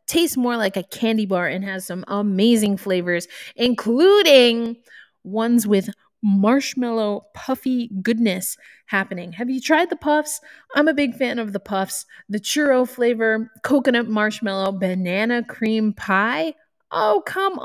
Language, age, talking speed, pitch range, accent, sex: English, 20-39, 135 wpm, 195-265 Hz, American, female